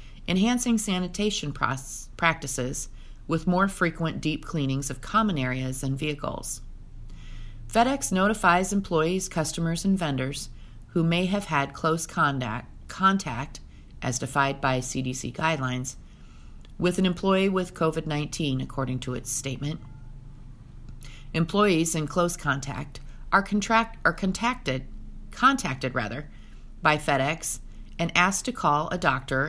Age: 40-59